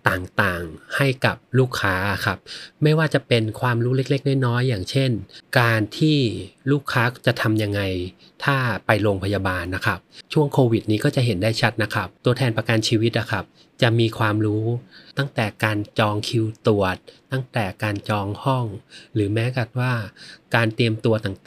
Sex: male